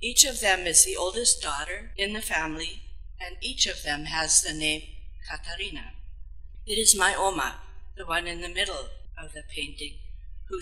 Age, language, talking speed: 60-79, English, 175 wpm